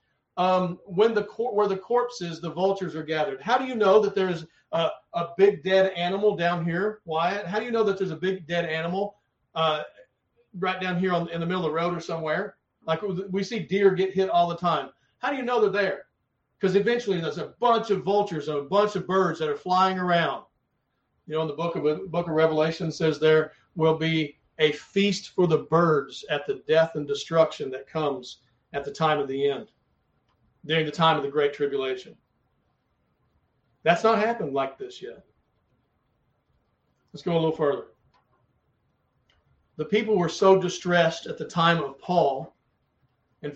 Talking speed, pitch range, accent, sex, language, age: 190 wpm, 160-200 Hz, American, male, English, 50-69